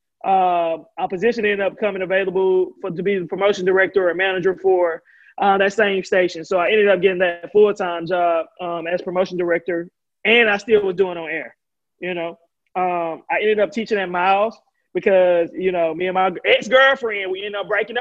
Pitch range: 185-215 Hz